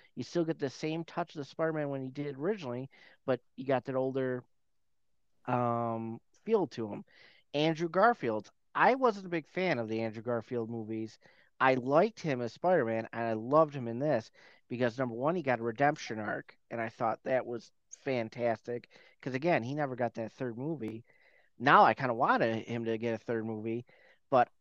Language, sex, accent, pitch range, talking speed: English, male, American, 115-140 Hz, 195 wpm